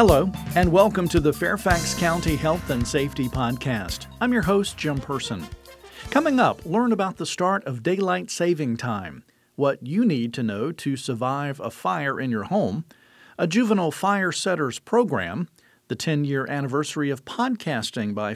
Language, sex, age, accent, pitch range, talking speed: English, male, 50-69, American, 135-205 Hz, 160 wpm